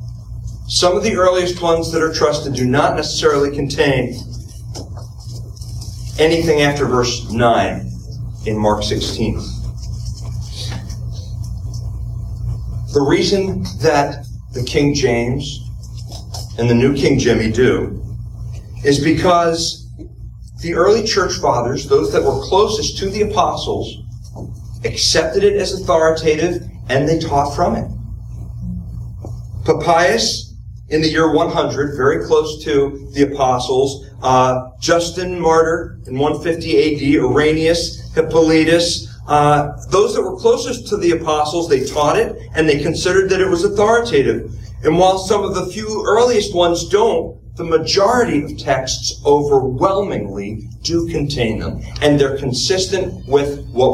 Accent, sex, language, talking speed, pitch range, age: American, male, English, 125 wpm, 115-160 Hz, 40-59